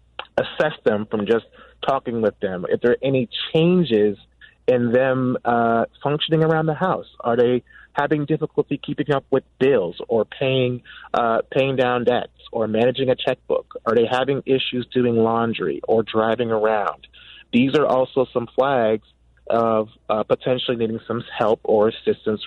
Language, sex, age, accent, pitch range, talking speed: English, male, 30-49, American, 110-135 Hz, 160 wpm